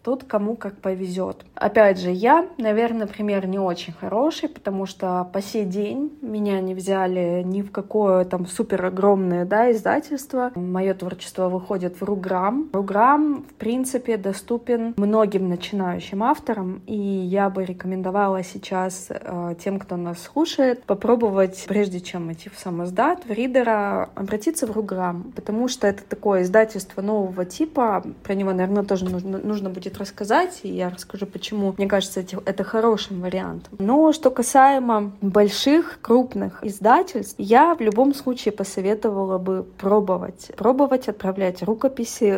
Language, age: Russian, 20-39